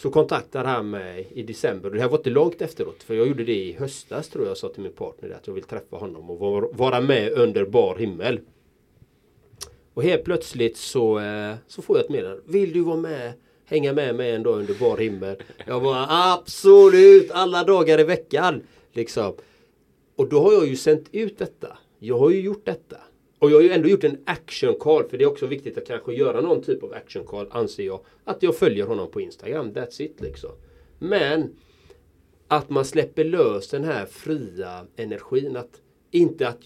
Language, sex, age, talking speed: Swedish, male, 30-49, 200 wpm